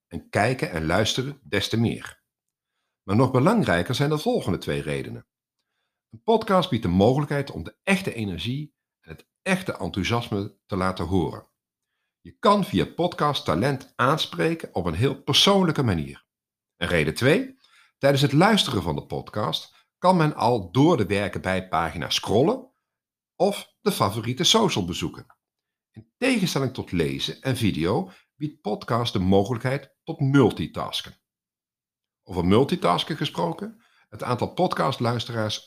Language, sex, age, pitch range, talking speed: Dutch, male, 50-69, 100-150 Hz, 140 wpm